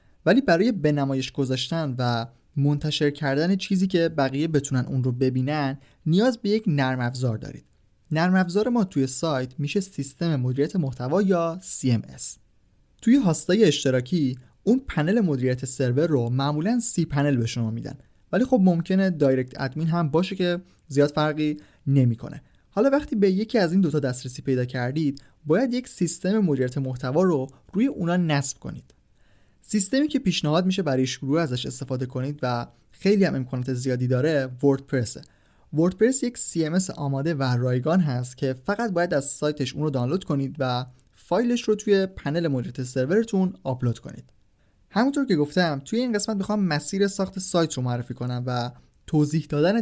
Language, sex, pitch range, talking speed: Persian, male, 130-185 Hz, 165 wpm